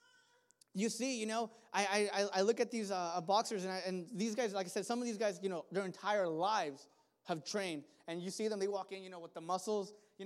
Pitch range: 200-255 Hz